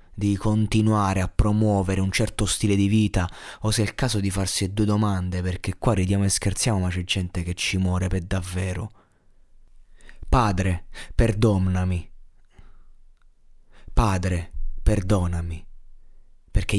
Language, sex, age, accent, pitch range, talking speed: Italian, male, 20-39, native, 90-105 Hz, 130 wpm